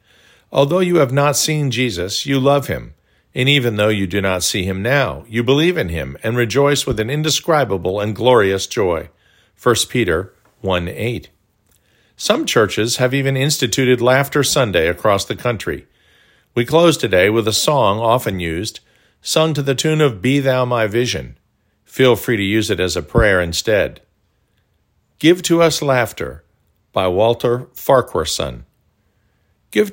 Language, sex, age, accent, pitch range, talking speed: English, male, 50-69, American, 100-135 Hz, 155 wpm